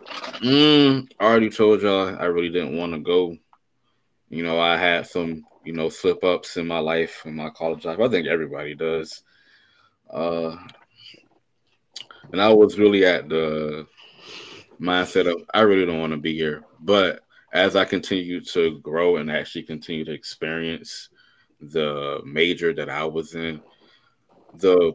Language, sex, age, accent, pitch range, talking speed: English, male, 20-39, American, 75-85 Hz, 155 wpm